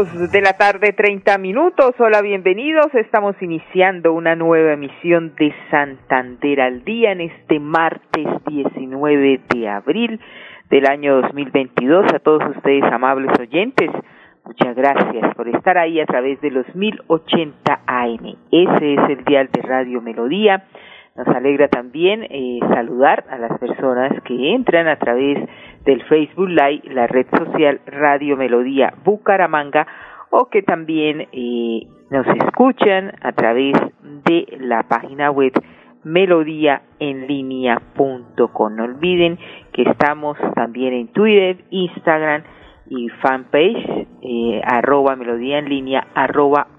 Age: 40-59